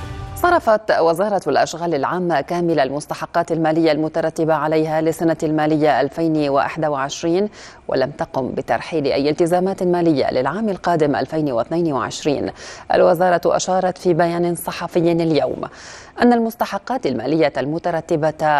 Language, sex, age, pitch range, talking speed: Arabic, female, 30-49, 155-180 Hz, 100 wpm